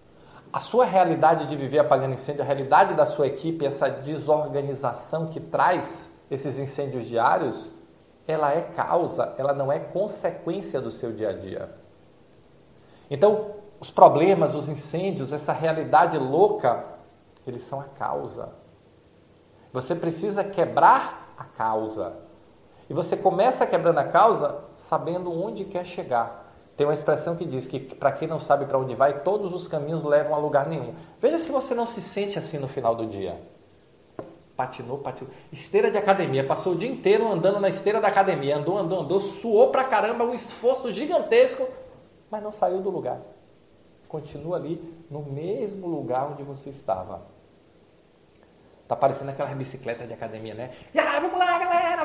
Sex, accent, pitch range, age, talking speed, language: male, Brazilian, 135-195 Hz, 40-59, 155 wpm, Portuguese